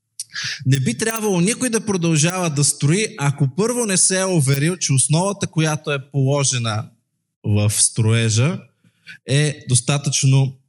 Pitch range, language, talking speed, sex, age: 120-155 Hz, Bulgarian, 130 wpm, male, 20-39